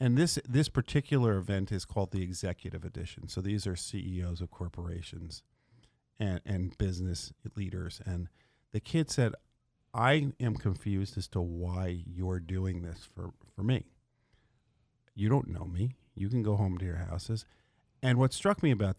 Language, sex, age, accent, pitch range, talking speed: English, male, 50-69, American, 95-125 Hz, 165 wpm